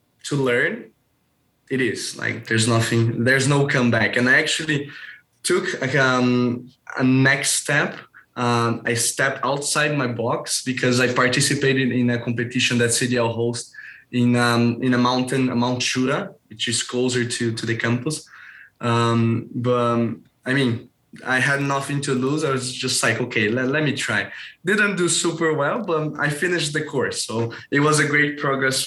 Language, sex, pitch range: English, male, 115-135 Hz